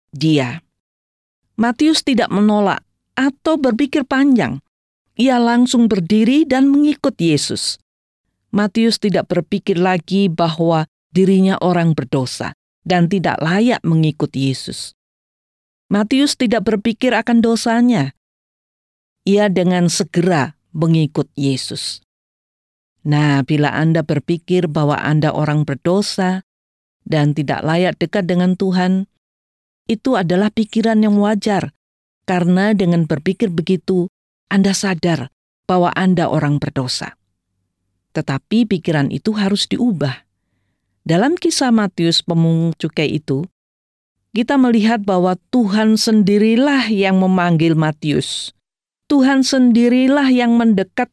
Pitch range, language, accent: 150-220 Hz, Indonesian, native